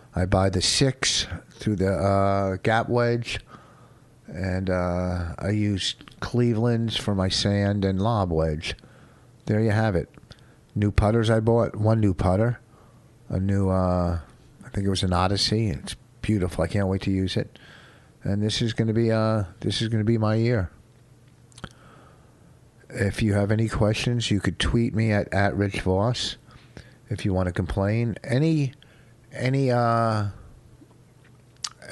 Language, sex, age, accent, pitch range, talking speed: English, male, 50-69, American, 95-120 Hz, 150 wpm